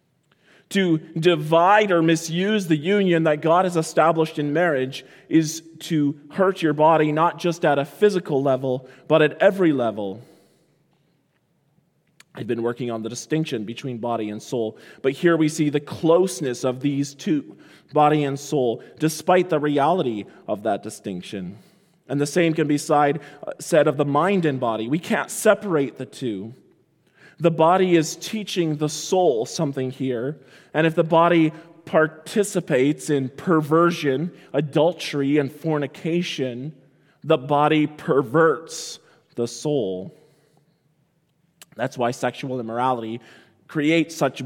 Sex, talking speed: male, 135 wpm